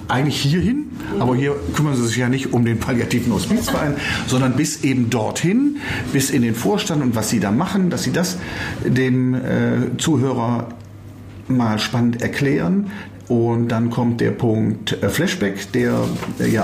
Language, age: German, 40-59